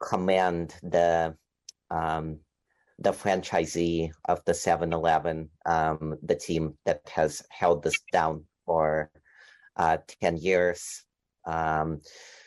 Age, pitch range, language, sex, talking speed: 40-59, 80-100 Hz, English, male, 100 wpm